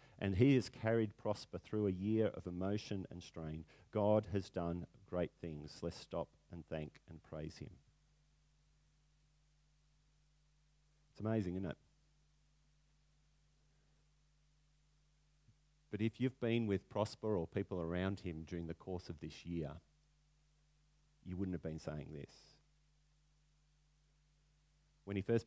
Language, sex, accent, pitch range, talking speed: English, male, Australian, 95-150 Hz, 125 wpm